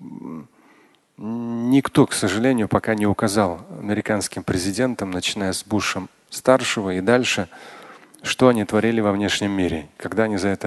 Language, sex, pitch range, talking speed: Russian, male, 100-120 Hz, 130 wpm